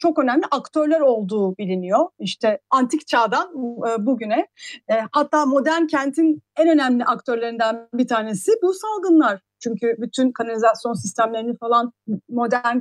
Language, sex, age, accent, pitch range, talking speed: Turkish, female, 40-59, native, 235-320 Hz, 115 wpm